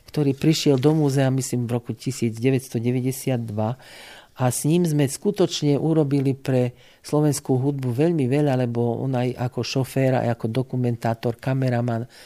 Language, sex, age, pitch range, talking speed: Slovak, male, 50-69, 115-140 Hz, 135 wpm